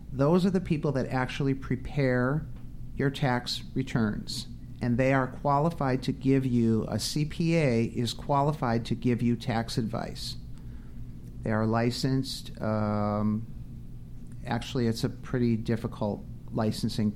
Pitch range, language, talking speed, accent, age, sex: 120-145 Hz, English, 125 wpm, American, 50-69, male